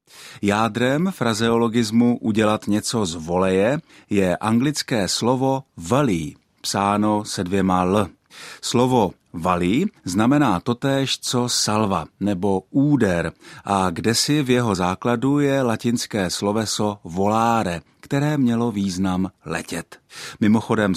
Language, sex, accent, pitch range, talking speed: Czech, male, native, 90-120 Hz, 105 wpm